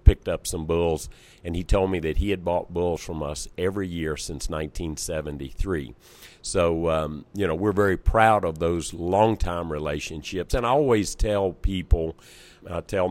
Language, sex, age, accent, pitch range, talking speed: English, male, 50-69, American, 80-95 Hz, 170 wpm